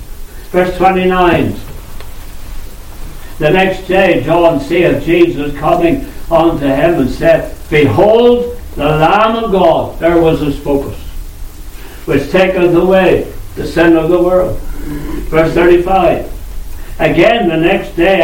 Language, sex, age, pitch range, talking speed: English, male, 60-79, 115-185 Hz, 120 wpm